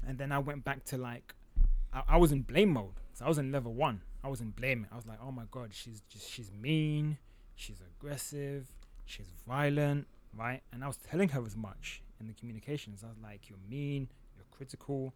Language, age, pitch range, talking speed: English, 30-49, 110-135 Hz, 215 wpm